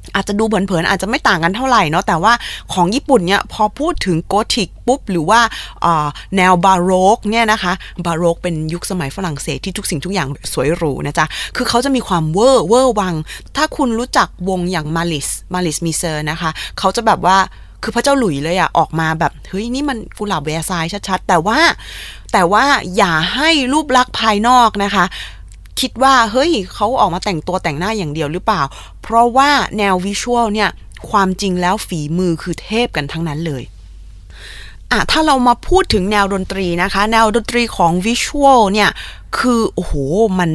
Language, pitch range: Thai, 180-235 Hz